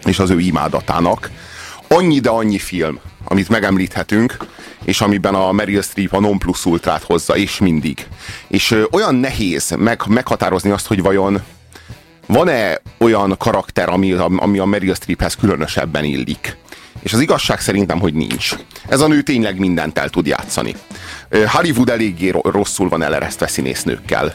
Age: 30-49